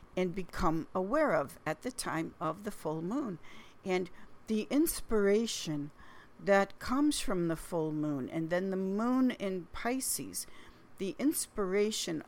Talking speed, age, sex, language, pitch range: 135 wpm, 50-69, female, English, 170-205 Hz